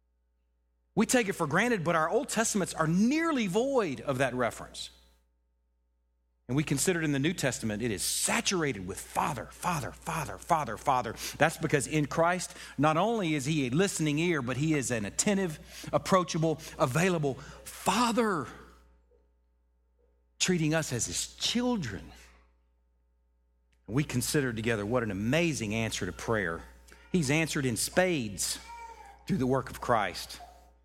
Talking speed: 145 wpm